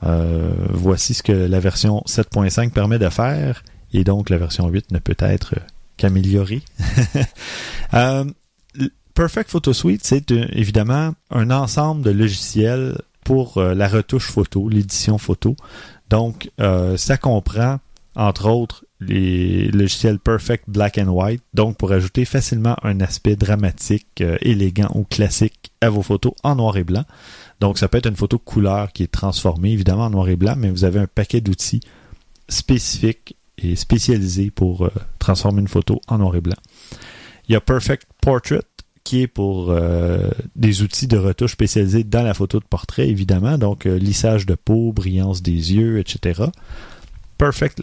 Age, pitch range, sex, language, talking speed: 30-49, 95-120 Hz, male, French, 165 wpm